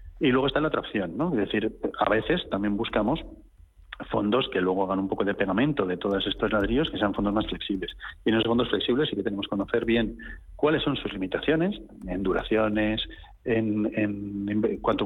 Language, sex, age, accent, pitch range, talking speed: Spanish, male, 40-59, Spanish, 105-120 Hz, 205 wpm